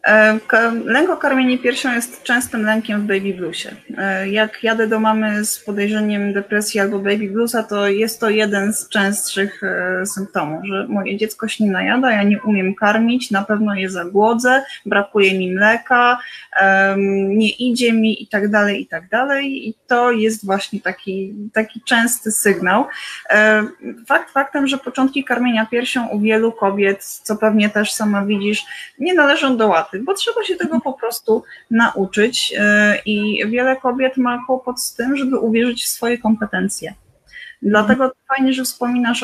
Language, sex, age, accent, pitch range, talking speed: Polish, female, 20-39, native, 205-245 Hz, 150 wpm